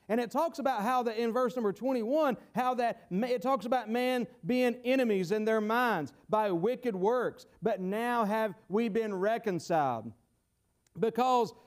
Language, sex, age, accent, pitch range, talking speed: English, male, 40-59, American, 190-255 Hz, 160 wpm